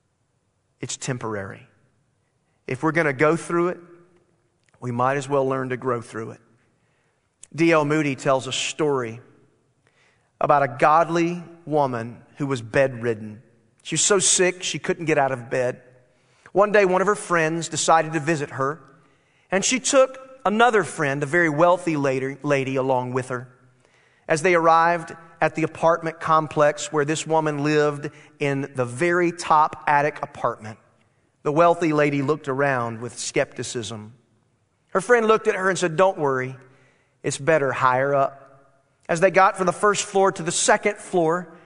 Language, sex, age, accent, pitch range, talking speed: English, male, 40-59, American, 130-170 Hz, 160 wpm